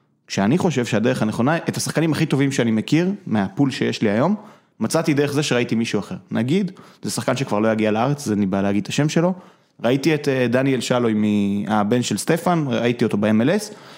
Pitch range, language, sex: 120-160 Hz, Hebrew, male